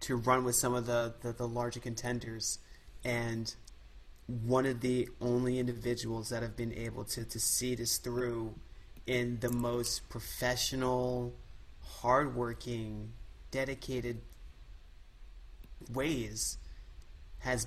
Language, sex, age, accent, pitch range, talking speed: English, male, 30-49, American, 115-130 Hz, 110 wpm